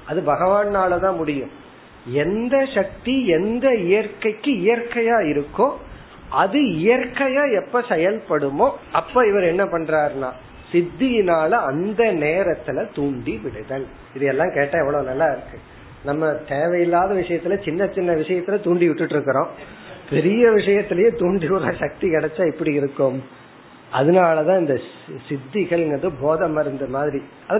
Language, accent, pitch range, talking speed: Tamil, native, 145-195 Hz, 90 wpm